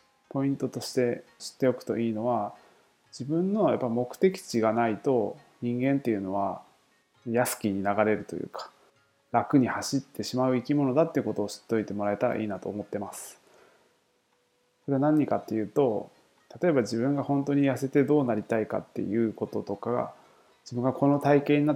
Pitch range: 110-135 Hz